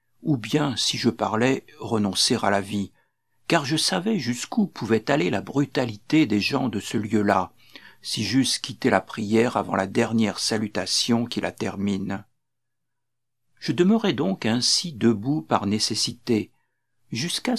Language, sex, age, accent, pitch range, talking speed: French, male, 60-79, French, 110-145 Hz, 145 wpm